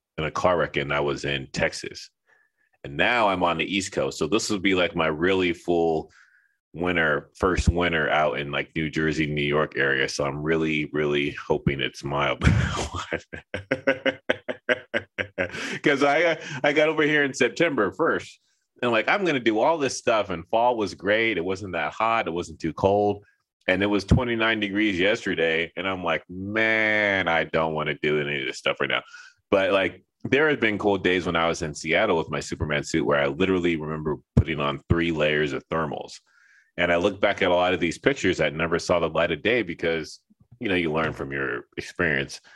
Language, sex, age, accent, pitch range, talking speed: English, male, 30-49, American, 80-100 Hz, 205 wpm